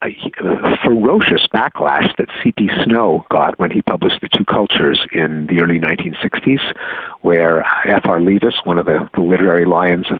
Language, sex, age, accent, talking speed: English, male, 60-79, American, 155 wpm